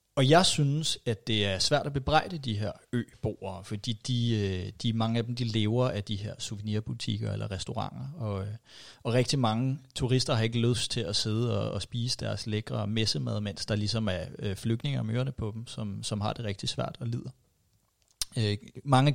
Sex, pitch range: male, 110-130 Hz